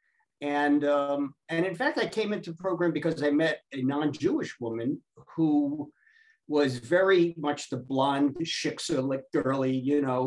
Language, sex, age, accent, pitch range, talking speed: English, male, 50-69, American, 120-150 Hz, 160 wpm